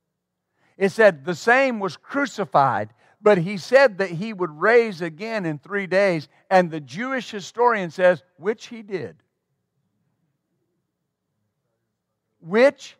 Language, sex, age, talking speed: English, male, 50-69, 120 wpm